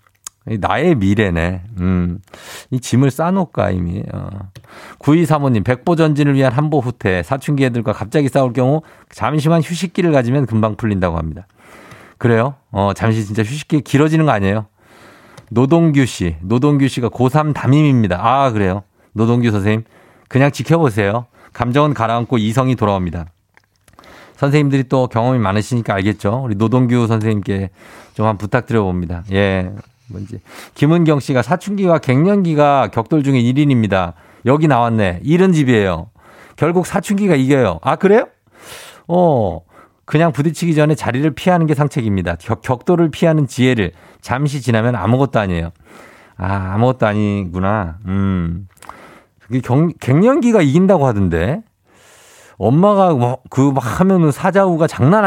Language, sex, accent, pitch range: Korean, male, native, 105-150 Hz